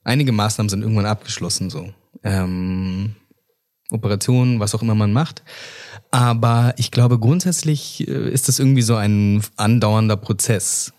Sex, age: male, 20-39